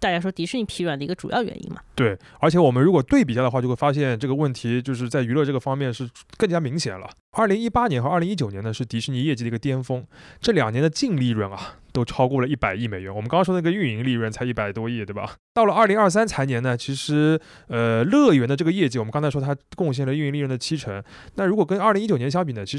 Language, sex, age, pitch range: Chinese, male, 20-39, 115-175 Hz